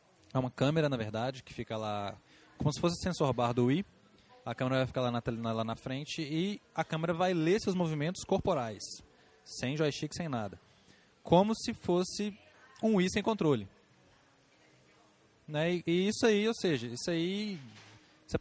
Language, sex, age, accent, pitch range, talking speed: Portuguese, male, 20-39, Brazilian, 120-175 Hz, 175 wpm